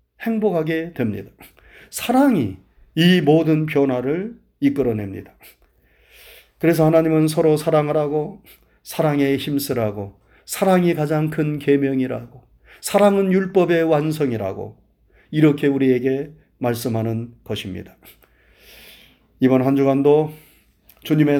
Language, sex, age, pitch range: Korean, male, 40-59, 115-150 Hz